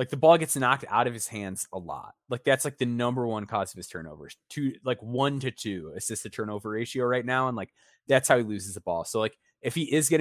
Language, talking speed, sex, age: English, 270 wpm, male, 20-39